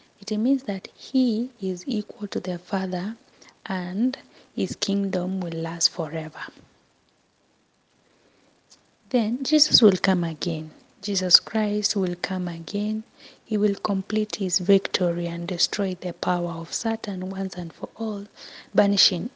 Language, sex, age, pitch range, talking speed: English, female, 20-39, 170-210 Hz, 125 wpm